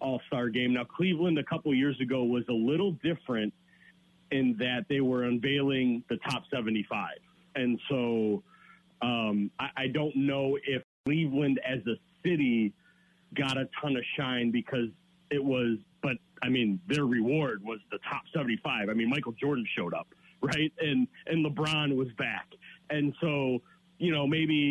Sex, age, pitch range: male, 40-59, 120-150 Hz